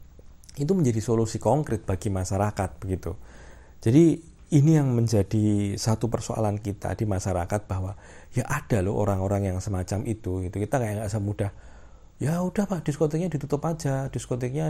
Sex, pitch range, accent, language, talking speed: male, 95-125 Hz, native, Indonesian, 145 wpm